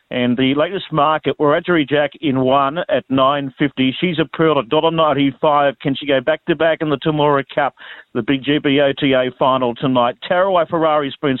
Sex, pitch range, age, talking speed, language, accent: male, 130-160 Hz, 50-69, 195 wpm, English, Australian